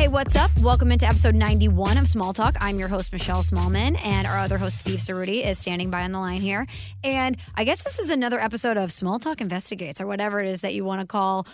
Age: 20-39